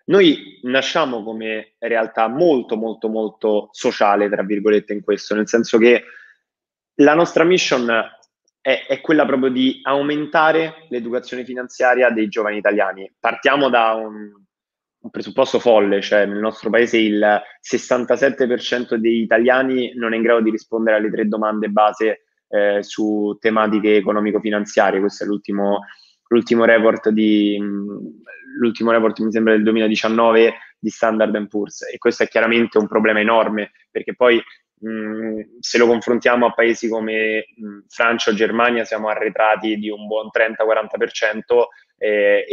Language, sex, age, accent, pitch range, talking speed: Italian, male, 20-39, native, 105-120 Hz, 140 wpm